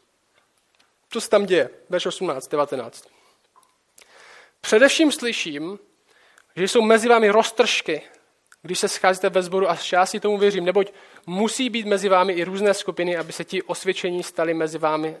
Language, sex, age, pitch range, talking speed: Czech, male, 20-39, 175-230 Hz, 150 wpm